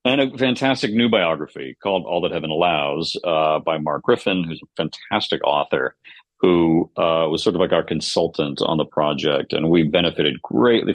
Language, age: English, 50-69